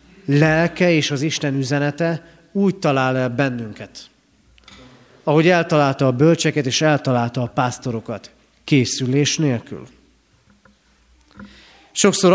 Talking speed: 95 wpm